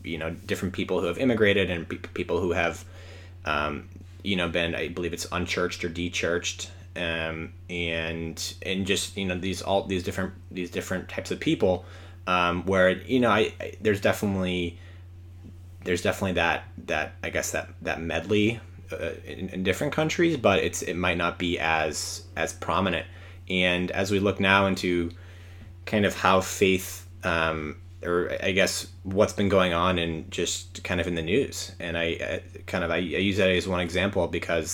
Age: 20-39